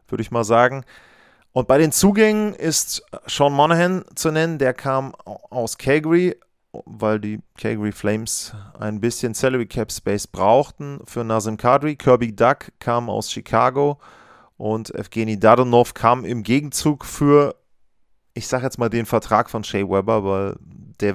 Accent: German